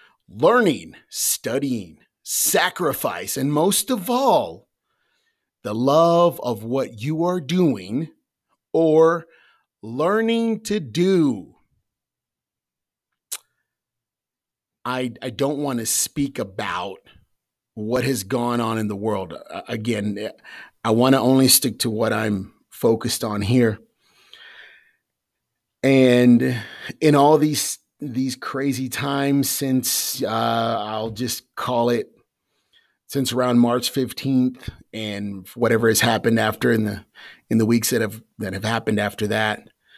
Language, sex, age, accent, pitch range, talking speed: English, male, 40-59, American, 110-140 Hz, 115 wpm